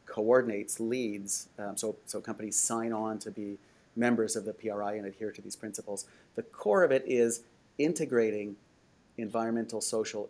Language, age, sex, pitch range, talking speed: English, 40-59, male, 110-120 Hz, 155 wpm